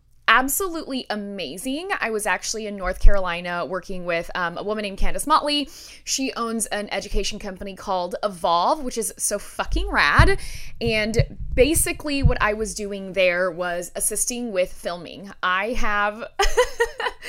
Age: 20-39